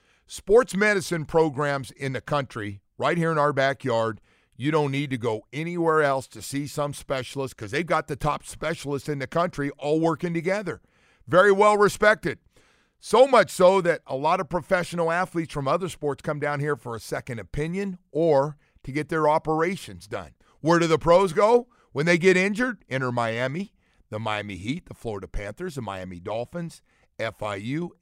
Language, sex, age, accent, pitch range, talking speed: English, male, 50-69, American, 115-155 Hz, 180 wpm